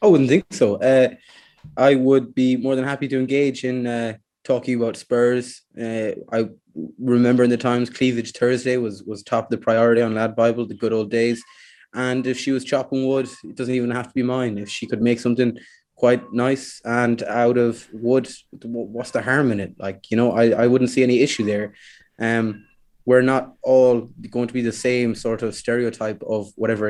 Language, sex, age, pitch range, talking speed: English, male, 20-39, 110-125 Hz, 205 wpm